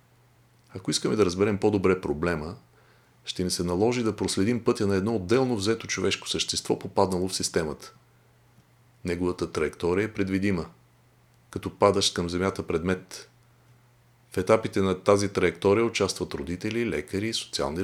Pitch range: 95-120 Hz